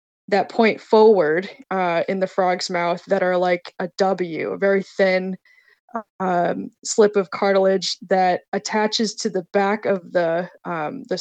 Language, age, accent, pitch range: English, 20-39, American, 185-215 Hz